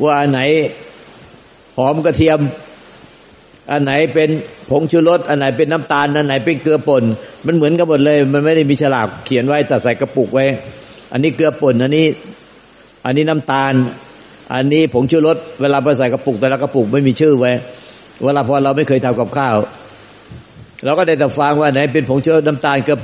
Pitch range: 125-145 Hz